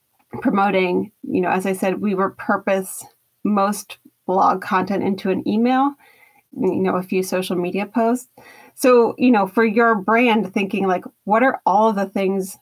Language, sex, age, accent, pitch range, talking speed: English, female, 30-49, American, 185-235 Hz, 170 wpm